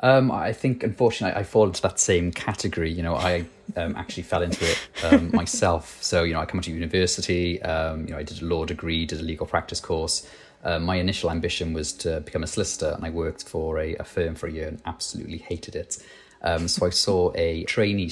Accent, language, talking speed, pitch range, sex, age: British, English, 230 wpm, 80-90 Hz, male, 30-49